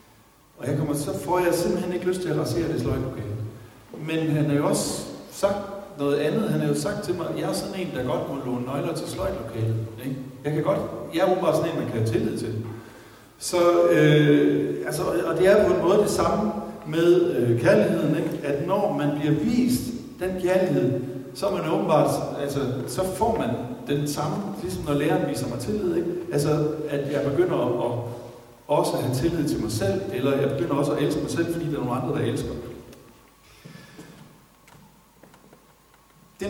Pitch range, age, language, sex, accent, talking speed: 120-165 Hz, 60-79, Danish, male, native, 200 wpm